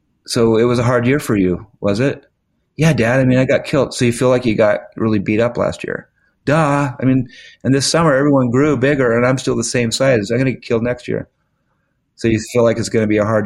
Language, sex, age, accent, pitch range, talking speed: English, male, 30-49, American, 95-120 Hz, 265 wpm